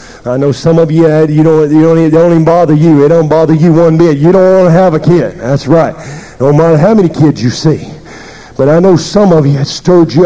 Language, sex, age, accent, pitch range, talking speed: English, male, 50-69, American, 160-215 Hz, 260 wpm